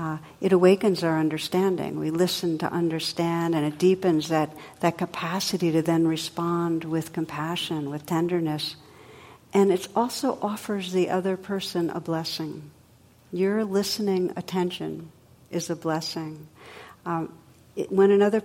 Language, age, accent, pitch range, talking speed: English, 60-79, American, 160-190 Hz, 135 wpm